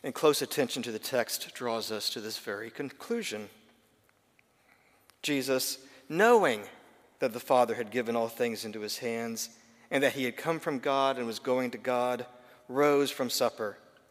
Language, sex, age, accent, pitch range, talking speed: English, male, 50-69, American, 110-135 Hz, 165 wpm